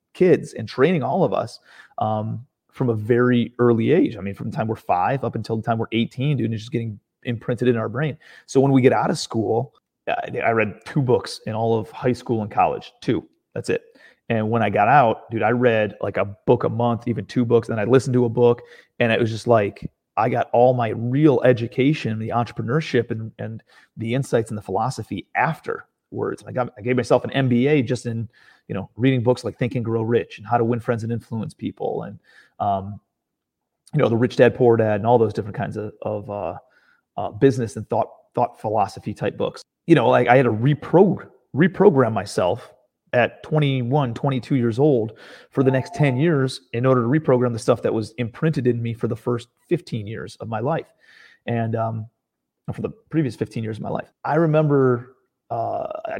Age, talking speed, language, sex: 30-49, 215 wpm, English, male